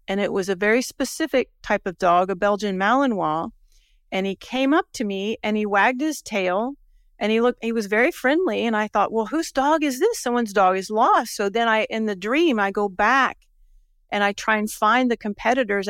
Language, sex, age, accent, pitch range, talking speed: English, female, 40-59, American, 200-255 Hz, 220 wpm